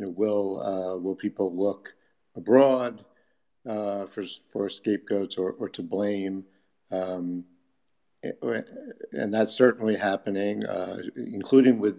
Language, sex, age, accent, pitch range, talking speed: English, male, 50-69, American, 90-100 Hz, 120 wpm